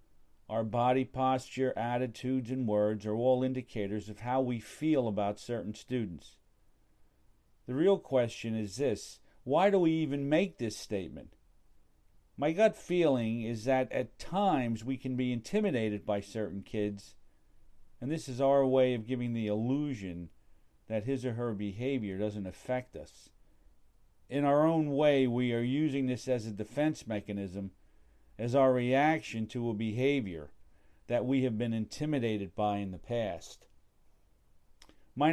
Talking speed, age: 150 wpm, 50-69